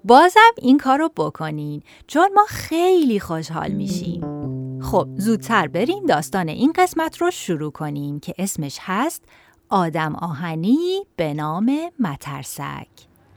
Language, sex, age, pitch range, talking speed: Persian, female, 30-49, 150-250 Hz, 115 wpm